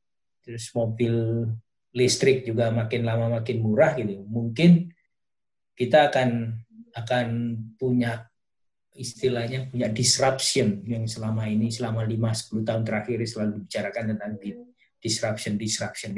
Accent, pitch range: native, 110-125 Hz